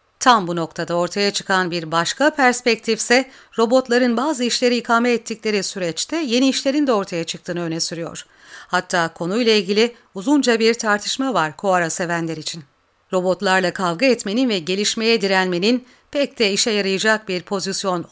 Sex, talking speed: female, 140 wpm